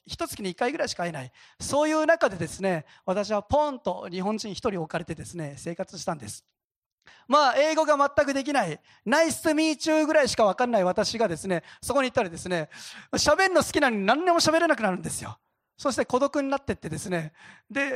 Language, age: Japanese, 40-59